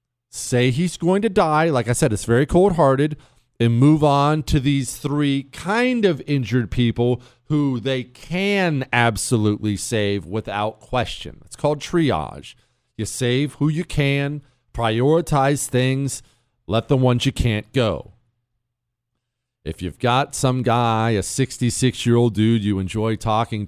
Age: 40-59